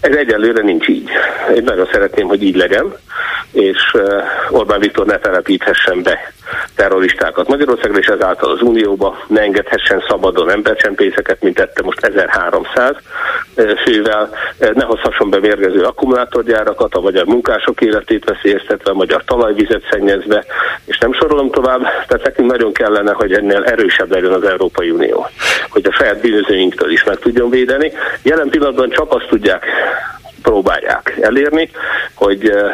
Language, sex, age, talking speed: Hungarian, male, 50-69, 130 wpm